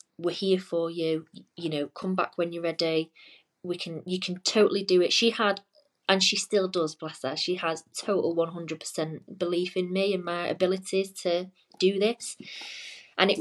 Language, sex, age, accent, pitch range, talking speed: English, female, 20-39, British, 165-190 Hz, 185 wpm